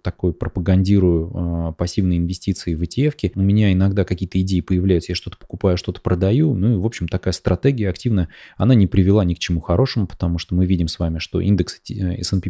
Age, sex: 20-39, male